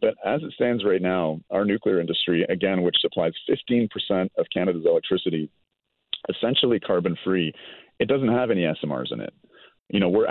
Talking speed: 165 wpm